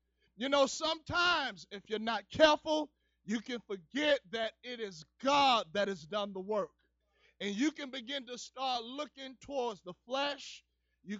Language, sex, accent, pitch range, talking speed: English, male, American, 250-335 Hz, 160 wpm